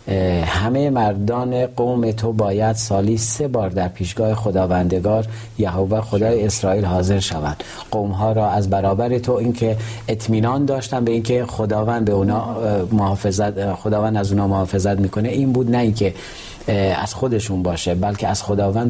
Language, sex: Persian, male